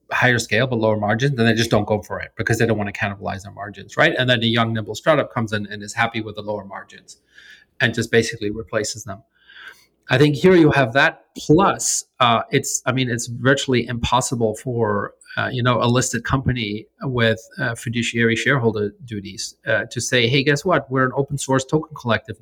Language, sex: English, male